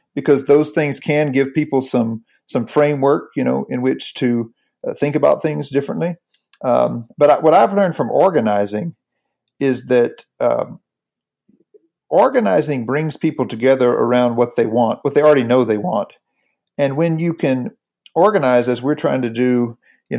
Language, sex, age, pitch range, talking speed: English, male, 40-59, 125-155 Hz, 160 wpm